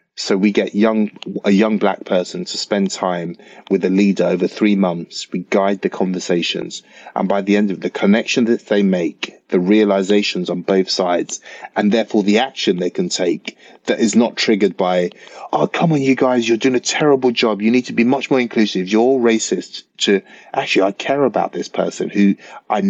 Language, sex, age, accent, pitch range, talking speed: English, male, 30-49, British, 95-115 Hz, 200 wpm